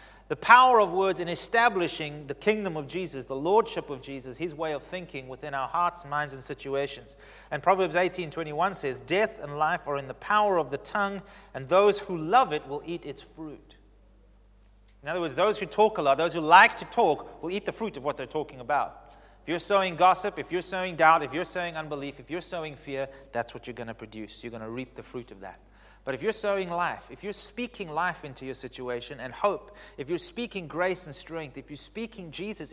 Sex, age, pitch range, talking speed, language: male, 30-49, 125-185 Hz, 225 wpm, English